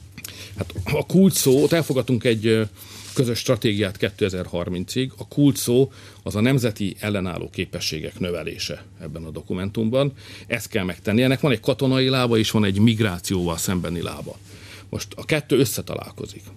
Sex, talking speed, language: male, 140 wpm, Hungarian